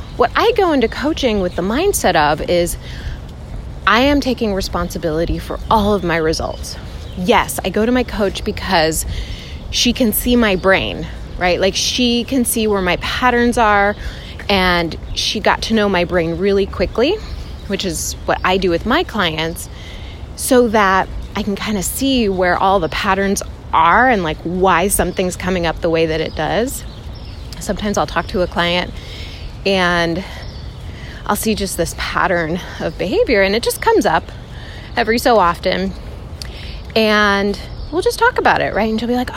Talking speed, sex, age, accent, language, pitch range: 170 wpm, female, 20-39, American, English, 175-240 Hz